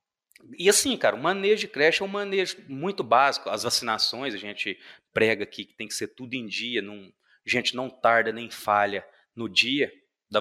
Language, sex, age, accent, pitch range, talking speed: Portuguese, male, 30-49, Brazilian, 130-175 Hz, 195 wpm